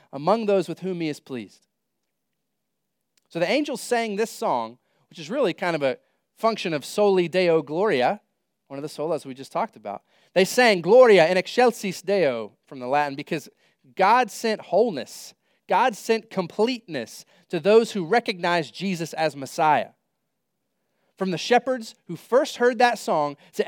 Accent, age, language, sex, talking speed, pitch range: American, 30-49, English, male, 160 wpm, 140-205 Hz